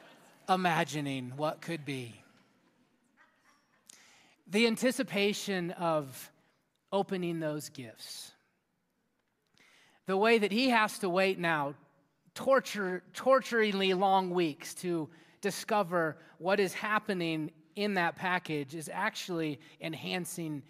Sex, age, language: male, 30-49, English